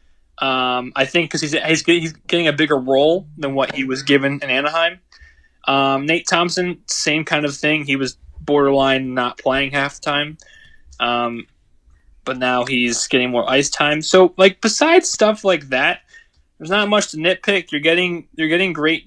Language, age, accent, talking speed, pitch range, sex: English, 20-39, American, 175 wpm, 125-155 Hz, male